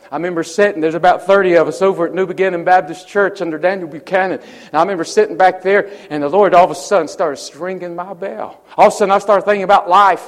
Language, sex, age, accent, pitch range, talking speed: English, male, 40-59, American, 170-210 Hz, 250 wpm